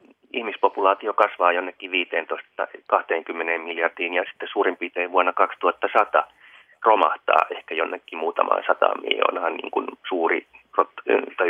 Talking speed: 110 wpm